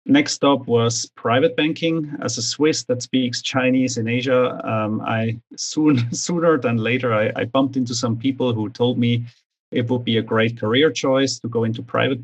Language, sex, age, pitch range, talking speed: English, male, 30-49, 115-135 Hz, 190 wpm